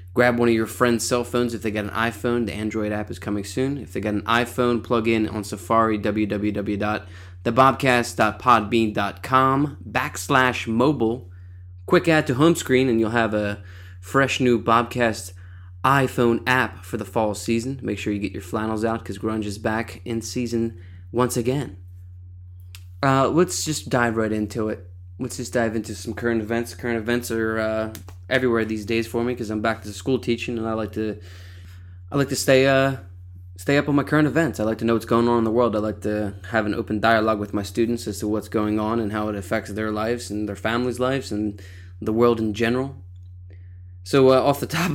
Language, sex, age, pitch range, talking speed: English, male, 20-39, 100-120 Hz, 205 wpm